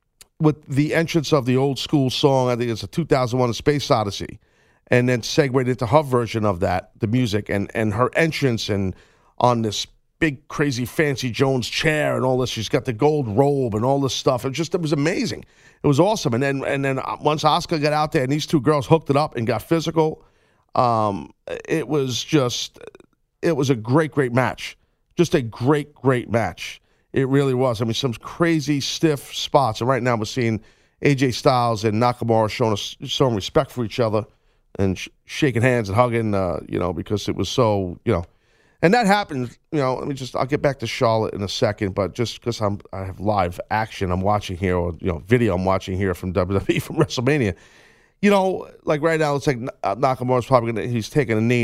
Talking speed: 210 wpm